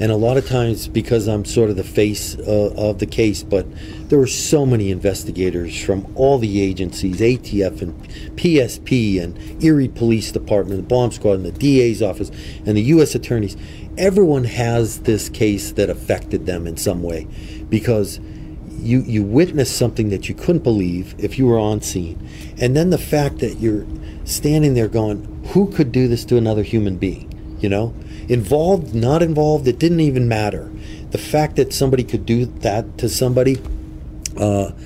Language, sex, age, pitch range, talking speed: English, male, 40-59, 95-125 Hz, 175 wpm